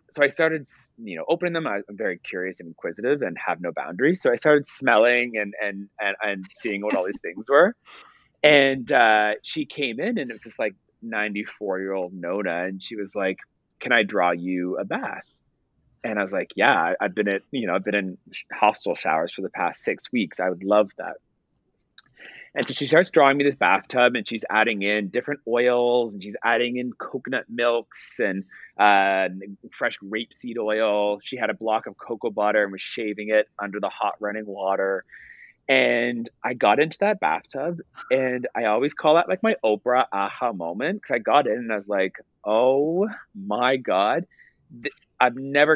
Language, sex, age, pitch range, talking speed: English, male, 30-49, 100-135 Hz, 195 wpm